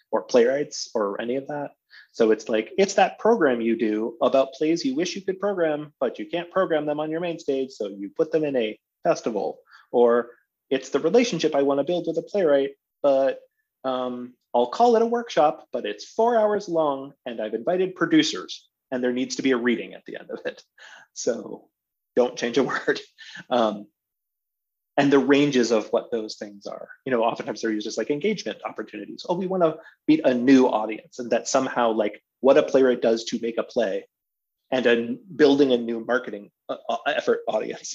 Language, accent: English, American